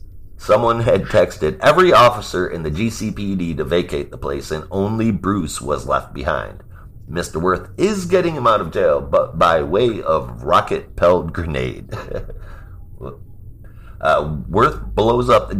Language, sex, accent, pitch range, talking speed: English, male, American, 85-100 Hz, 140 wpm